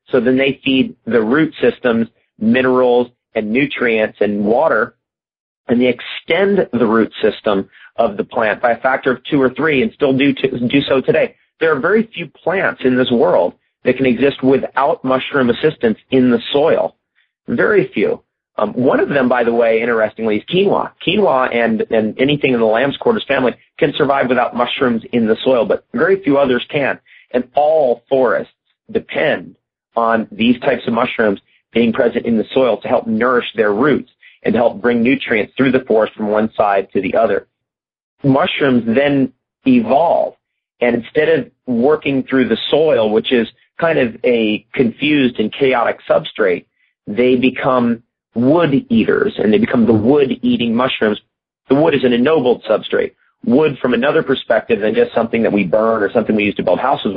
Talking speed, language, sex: 175 wpm, English, male